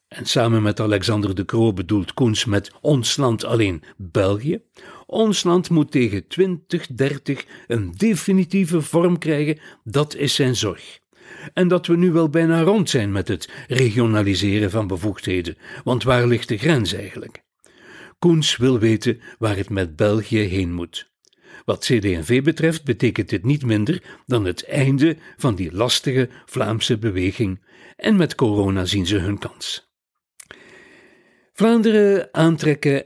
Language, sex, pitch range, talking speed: Dutch, male, 105-150 Hz, 140 wpm